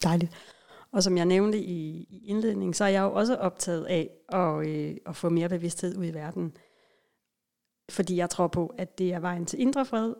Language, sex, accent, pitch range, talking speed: Danish, female, native, 180-220 Hz, 205 wpm